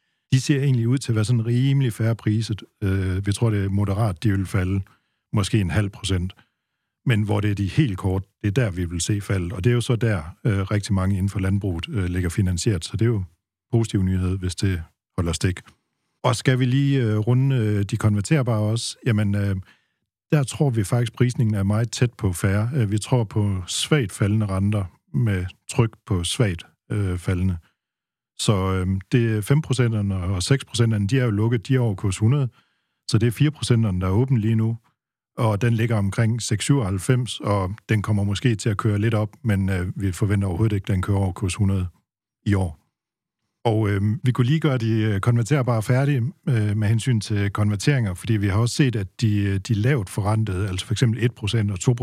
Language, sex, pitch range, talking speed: Danish, male, 100-120 Hz, 205 wpm